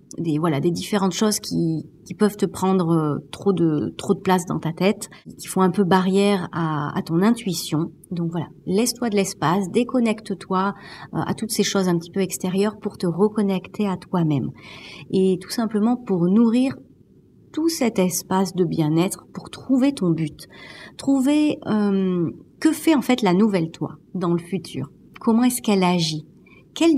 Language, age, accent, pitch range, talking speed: French, 40-59, French, 175-215 Hz, 170 wpm